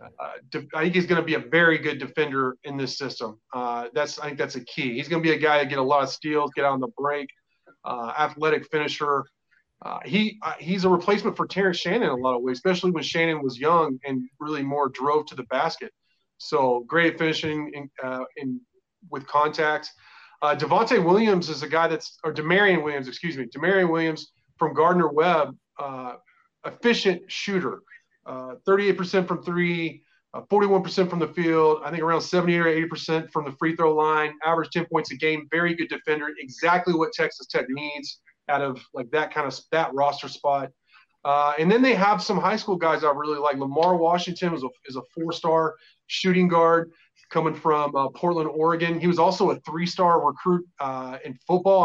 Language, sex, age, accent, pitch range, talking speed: English, male, 30-49, American, 145-170 Hz, 200 wpm